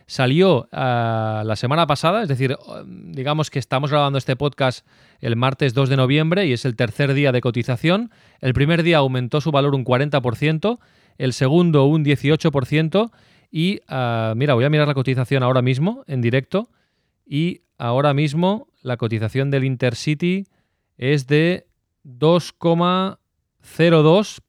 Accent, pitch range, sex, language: Spanish, 120-155 Hz, male, Spanish